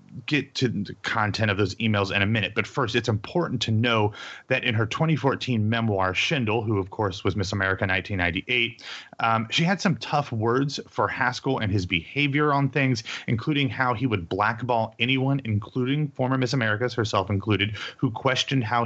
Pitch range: 105-130 Hz